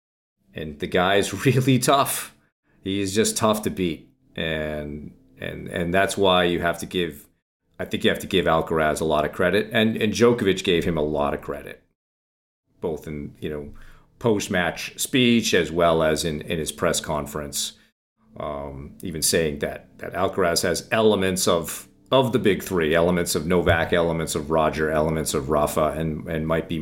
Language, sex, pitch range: English, male, 75-95 Hz